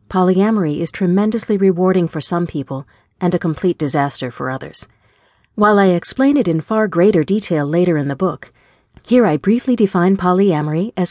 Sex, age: female, 40-59